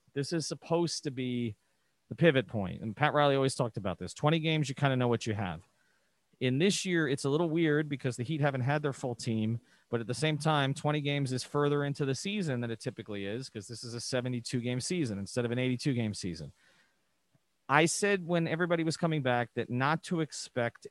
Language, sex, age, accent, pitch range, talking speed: English, male, 30-49, American, 115-150 Hz, 225 wpm